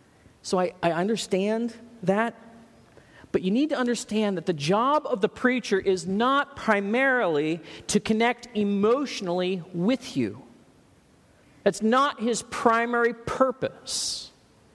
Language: English